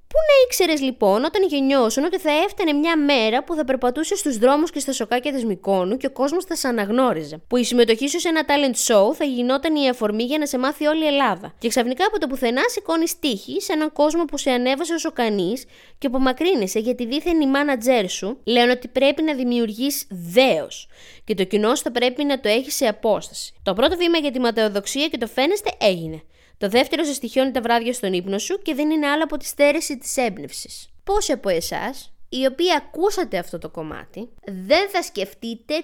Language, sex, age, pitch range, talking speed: Greek, female, 20-39, 225-305 Hz, 210 wpm